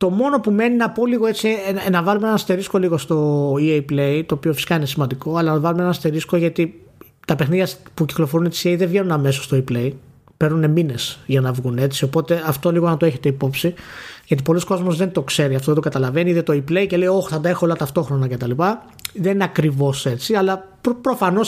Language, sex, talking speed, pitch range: Greek, male, 230 wpm, 140-185 Hz